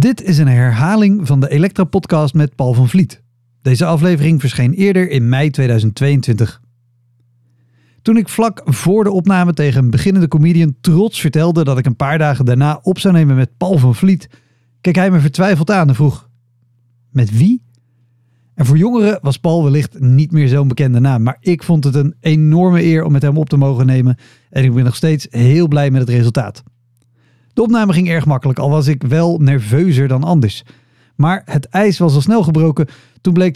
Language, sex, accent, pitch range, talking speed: Dutch, male, Dutch, 125-170 Hz, 195 wpm